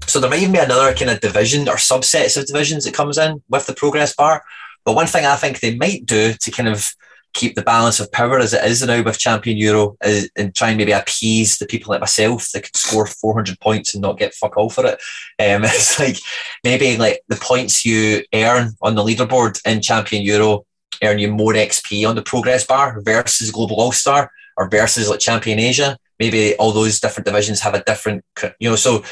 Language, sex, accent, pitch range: English, male, British, 105-120 Hz